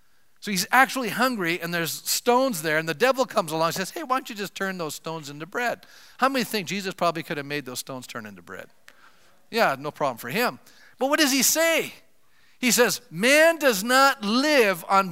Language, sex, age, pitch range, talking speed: English, male, 50-69, 140-230 Hz, 220 wpm